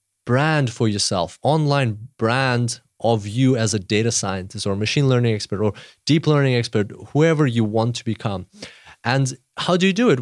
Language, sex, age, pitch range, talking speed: English, male, 20-39, 115-145 Hz, 175 wpm